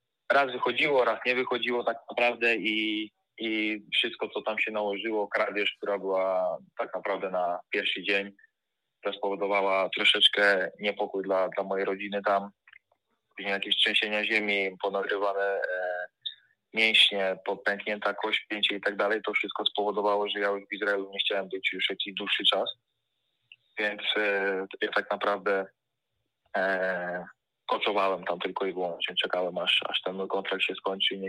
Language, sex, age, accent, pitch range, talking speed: Polish, male, 20-39, native, 95-110 Hz, 150 wpm